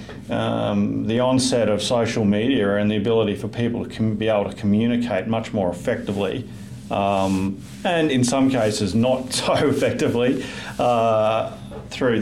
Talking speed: 140 wpm